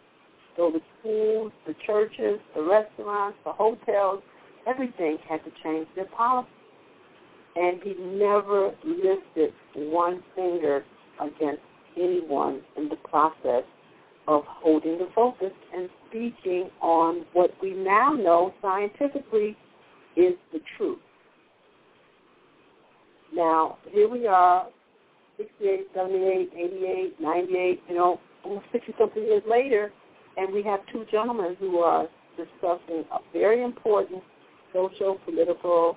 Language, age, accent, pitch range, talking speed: English, 50-69, American, 170-250 Hz, 120 wpm